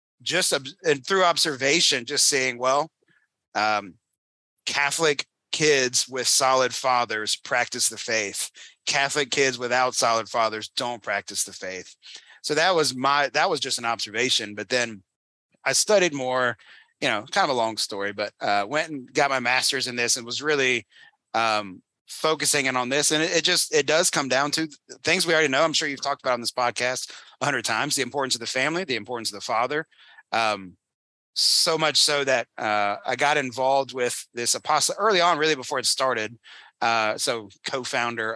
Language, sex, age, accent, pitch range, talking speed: English, male, 30-49, American, 115-145 Hz, 185 wpm